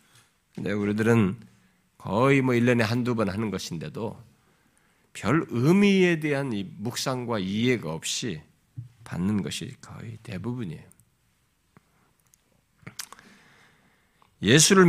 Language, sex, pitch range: Korean, male, 100-140 Hz